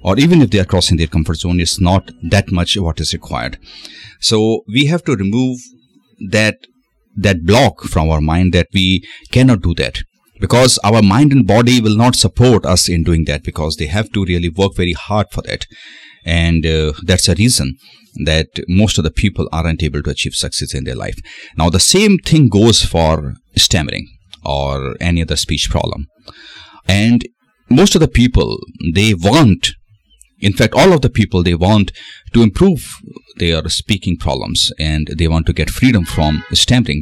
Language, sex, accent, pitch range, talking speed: Hindi, male, native, 85-115 Hz, 180 wpm